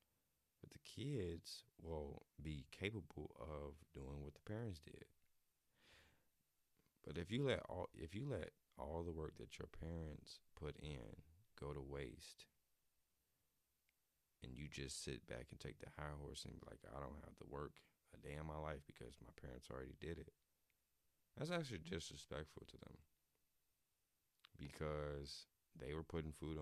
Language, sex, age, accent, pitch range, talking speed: English, male, 30-49, American, 75-95 Hz, 160 wpm